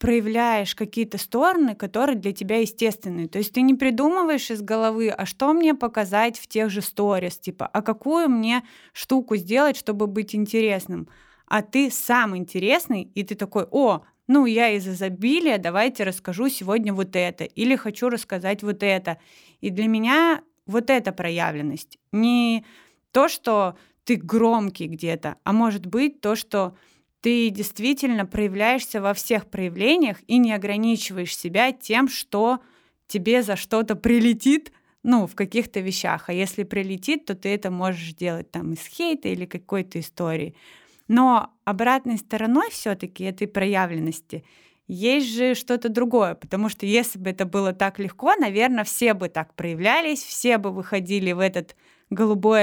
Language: Russian